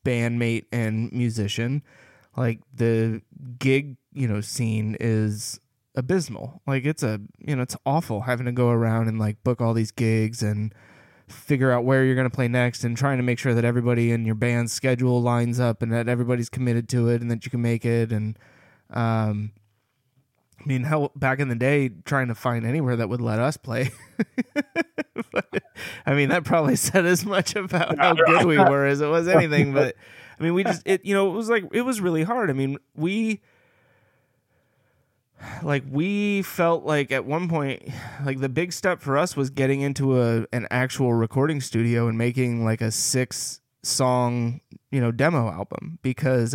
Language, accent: English, American